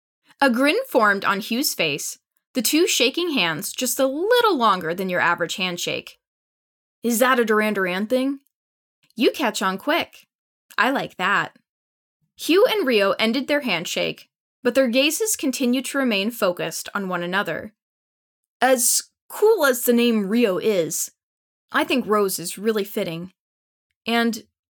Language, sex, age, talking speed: English, female, 10-29, 150 wpm